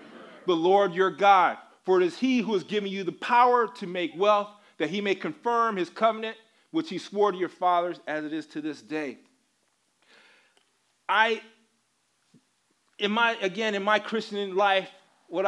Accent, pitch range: American, 150-220 Hz